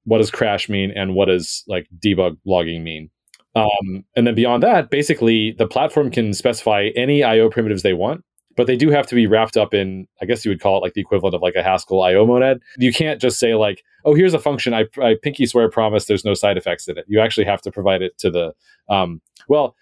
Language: English